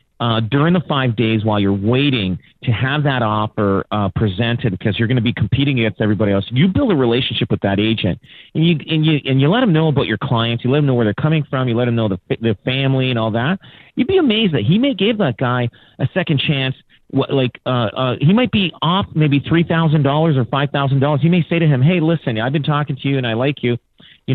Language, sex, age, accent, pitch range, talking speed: English, male, 40-59, American, 105-140 Hz, 250 wpm